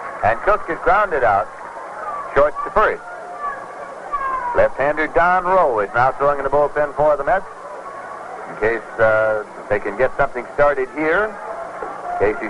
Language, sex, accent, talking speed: English, male, American, 145 wpm